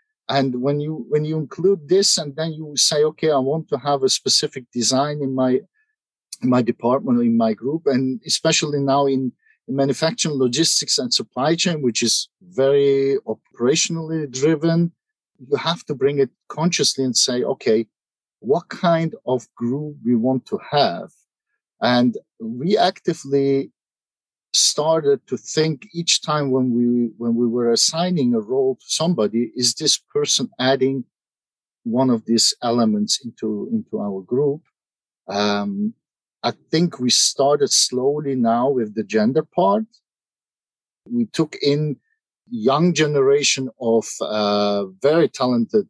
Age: 50-69